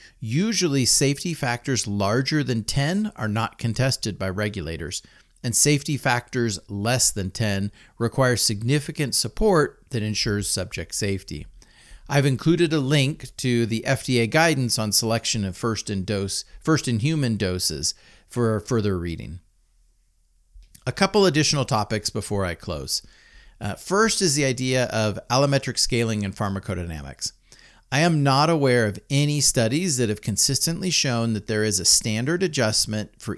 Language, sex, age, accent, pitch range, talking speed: English, male, 40-59, American, 105-145 Hz, 145 wpm